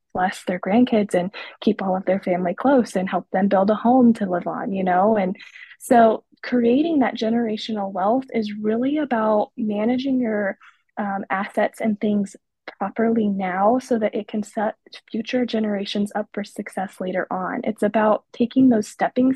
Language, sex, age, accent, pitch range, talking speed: English, female, 20-39, American, 200-235 Hz, 170 wpm